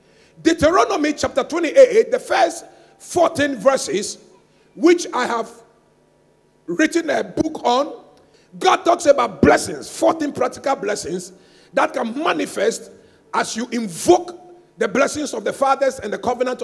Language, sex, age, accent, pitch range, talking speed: English, male, 50-69, Nigerian, 250-345 Hz, 125 wpm